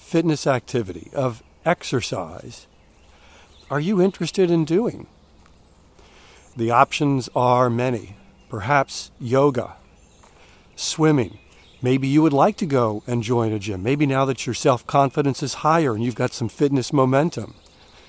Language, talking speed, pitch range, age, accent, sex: English, 130 wpm, 110-145 Hz, 50-69, American, male